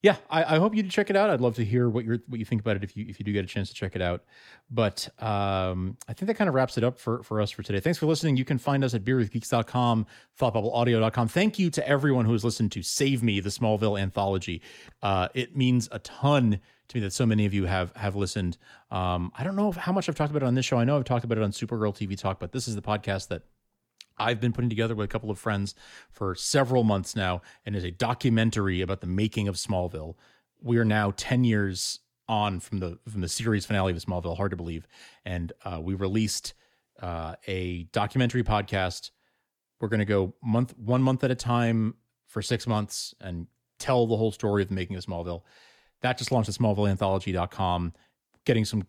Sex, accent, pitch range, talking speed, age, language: male, American, 95-125 Hz, 235 wpm, 30-49, English